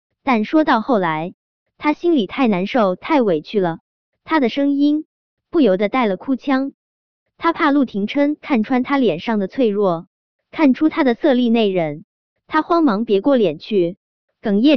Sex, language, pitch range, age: male, Chinese, 195-285 Hz, 20-39